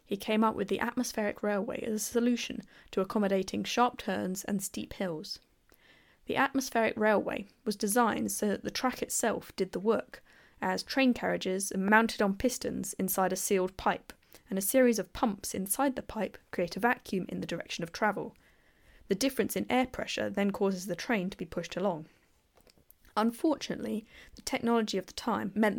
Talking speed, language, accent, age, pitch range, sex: 180 wpm, English, British, 10-29, 195-245 Hz, female